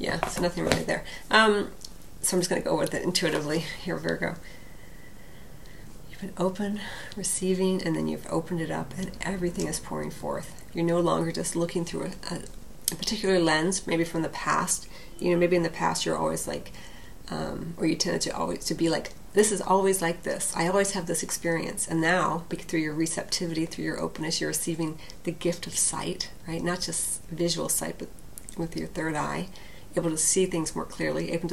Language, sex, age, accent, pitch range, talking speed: English, female, 40-59, American, 160-185 Hz, 195 wpm